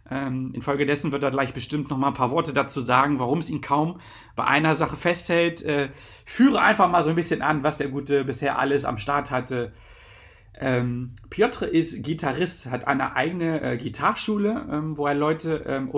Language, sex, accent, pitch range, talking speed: German, male, German, 125-155 Hz, 190 wpm